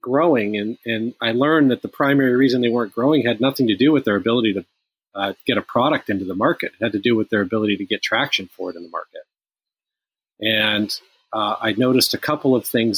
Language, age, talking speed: English, 40-59, 230 wpm